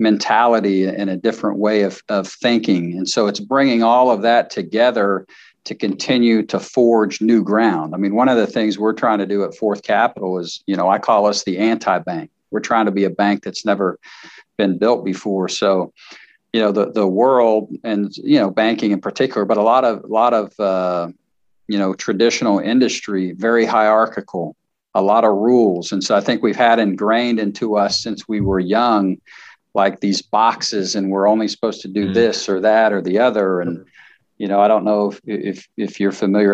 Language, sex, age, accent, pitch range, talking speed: English, male, 50-69, American, 100-110 Hz, 200 wpm